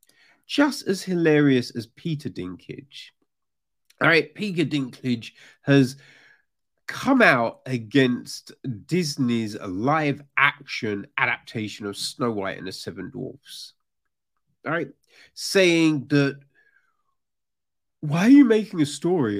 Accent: British